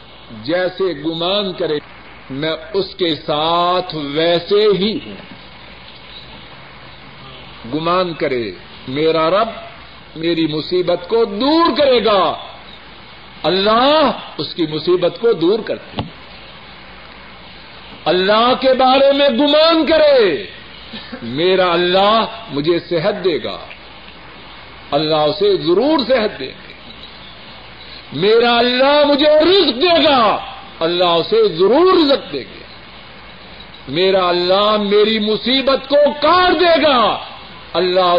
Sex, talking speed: male, 105 wpm